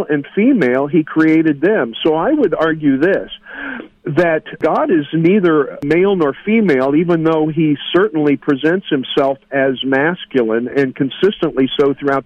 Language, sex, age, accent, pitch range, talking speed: English, male, 50-69, American, 140-170 Hz, 140 wpm